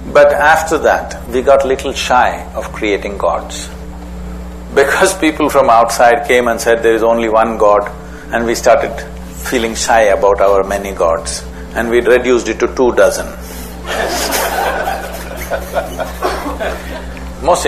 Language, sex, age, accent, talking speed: English, male, 60-79, Indian, 130 wpm